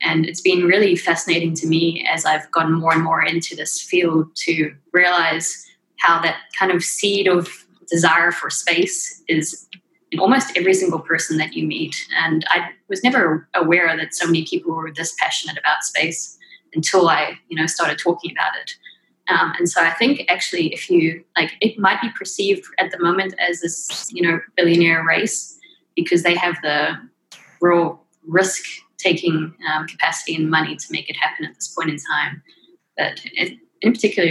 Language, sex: English, female